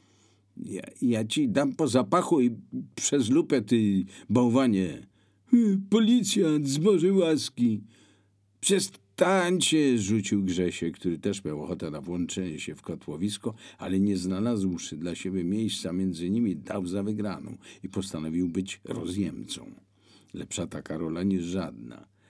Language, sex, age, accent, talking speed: Polish, male, 50-69, native, 125 wpm